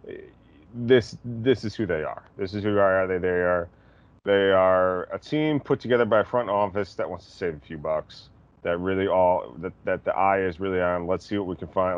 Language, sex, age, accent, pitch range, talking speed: English, male, 30-49, American, 90-110 Hz, 230 wpm